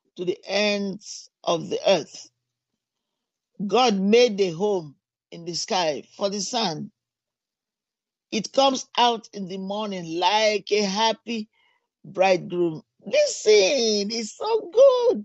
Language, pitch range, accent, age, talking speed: English, 180-245 Hz, Nigerian, 50-69, 120 wpm